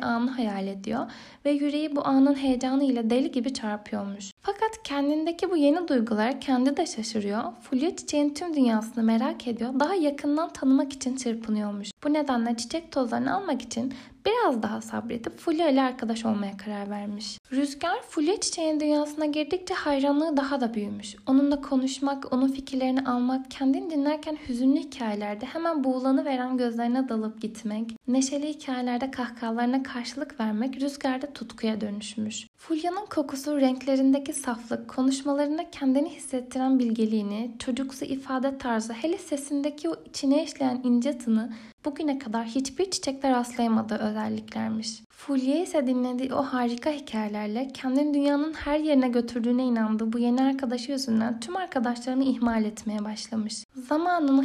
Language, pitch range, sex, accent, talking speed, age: Turkish, 230-285 Hz, female, native, 135 wpm, 10-29